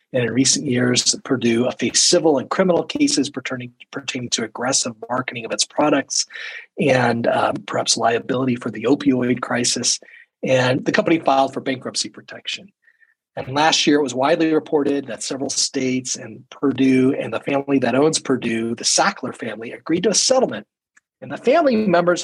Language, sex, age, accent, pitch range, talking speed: English, male, 40-59, American, 130-195 Hz, 165 wpm